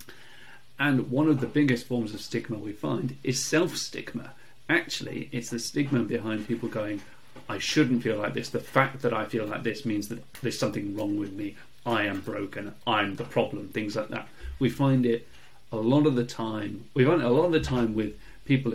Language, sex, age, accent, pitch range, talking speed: English, male, 30-49, British, 115-145 Hz, 210 wpm